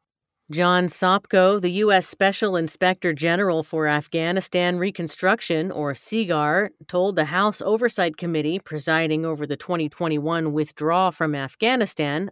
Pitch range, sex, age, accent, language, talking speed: 155-190 Hz, female, 40-59, American, English, 115 wpm